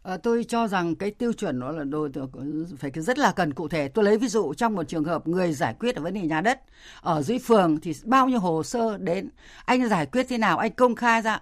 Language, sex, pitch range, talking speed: Vietnamese, female, 165-230 Hz, 265 wpm